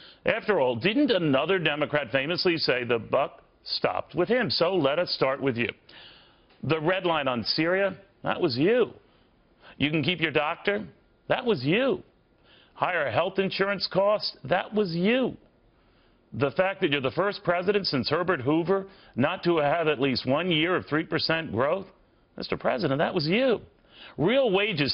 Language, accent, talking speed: English, American, 165 wpm